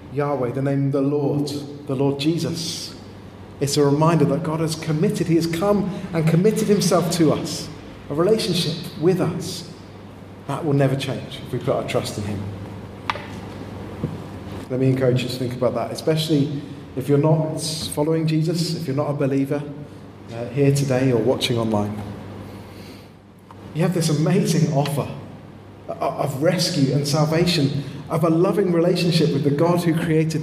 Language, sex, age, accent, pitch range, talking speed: English, male, 30-49, British, 120-155 Hz, 160 wpm